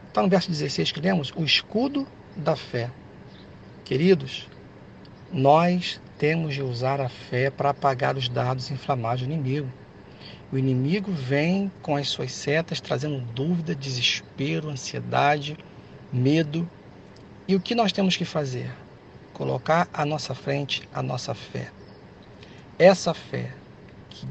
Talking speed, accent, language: 130 wpm, Brazilian, Portuguese